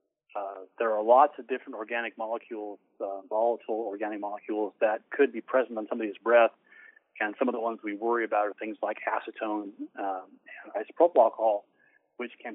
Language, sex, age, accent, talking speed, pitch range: English, male, 40-59, American, 175 wpm, 110-130 Hz